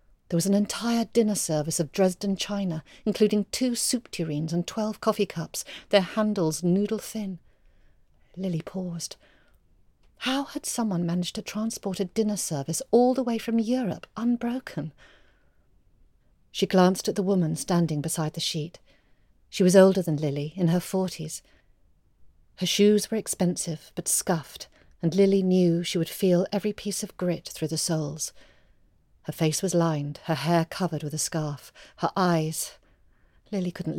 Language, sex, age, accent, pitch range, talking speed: English, female, 40-59, British, 165-200 Hz, 155 wpm